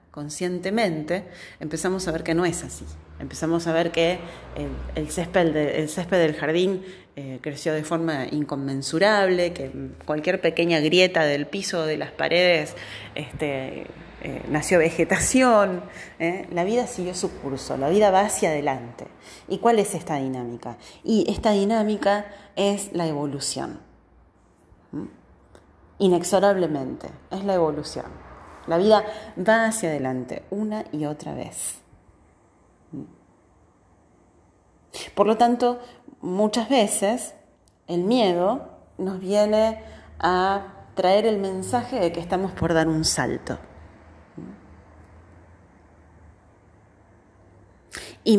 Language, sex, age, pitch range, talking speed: Spanish, female, 30-49, 140-200 Hz, 110 wpm